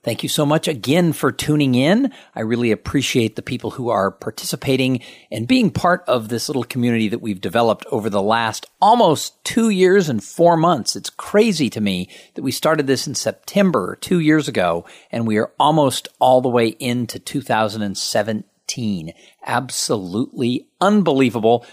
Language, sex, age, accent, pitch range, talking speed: English, male, 50-69, American, 110-155 Hz, 165 wpm